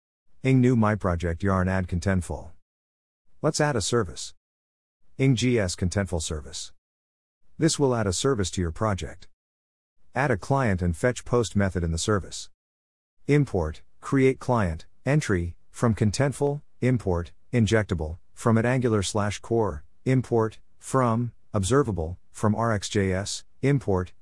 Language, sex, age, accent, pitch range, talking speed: English, male, 50-69, American, 85-115 Hz, 130 wpm